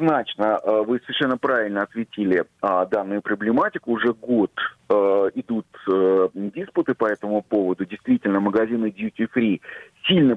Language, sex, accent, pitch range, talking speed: Russian, male, native, 105-130 Hz, 125 wpm